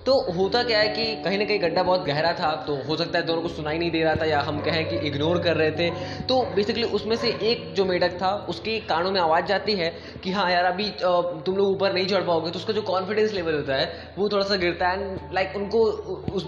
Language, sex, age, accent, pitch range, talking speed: Hindi, male, 20-39, native, 160-195 Hz, 260 wpm